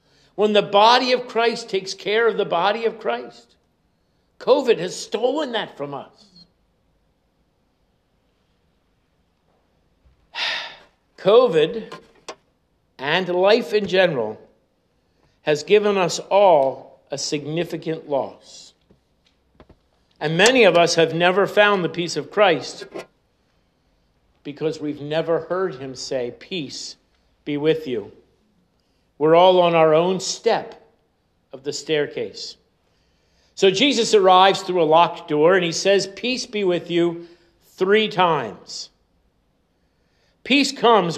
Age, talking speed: 50-69, 115 wpm